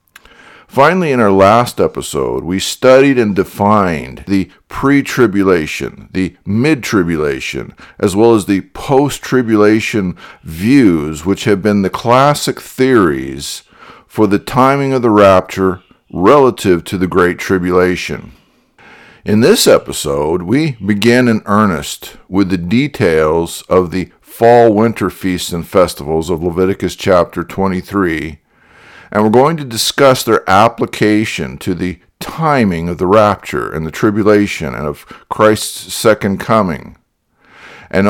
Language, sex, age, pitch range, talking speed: English, male, 50-69, 90-115 Hz, 130 wpm